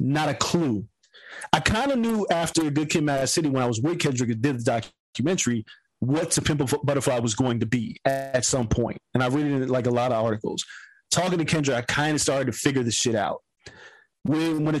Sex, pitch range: male, 130-200 Hz